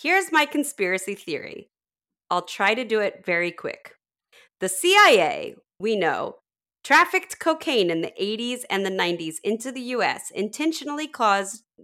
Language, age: English, 30-49